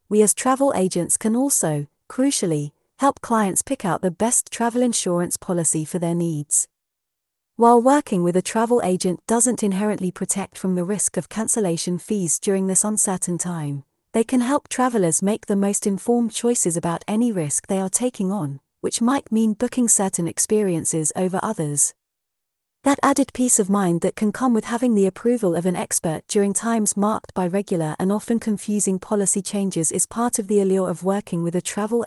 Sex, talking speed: female, 180 wpm